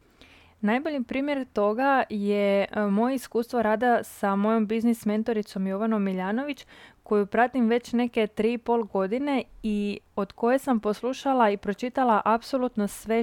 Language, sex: Croatian, female